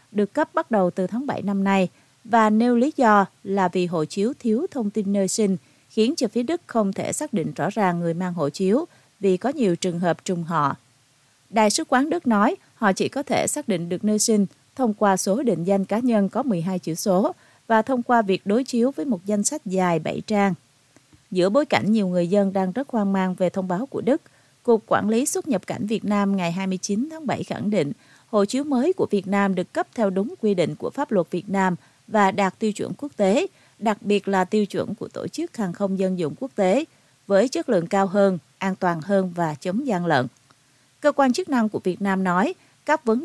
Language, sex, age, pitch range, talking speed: Vietnamese, female, 30-49, 180-230 Hz, 235 wpm